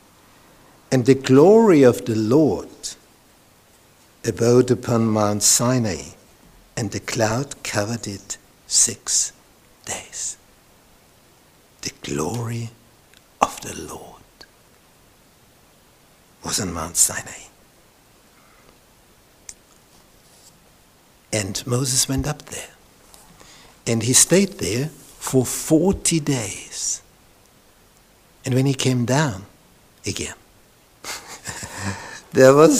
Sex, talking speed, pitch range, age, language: male, 85 wpm, 120-180 Hz, 60-79, English